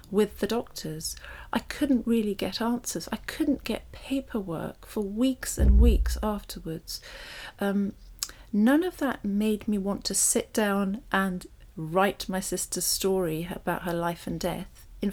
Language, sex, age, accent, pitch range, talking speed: English, female, 40-59, British, 175-205 Hz, 150 wpm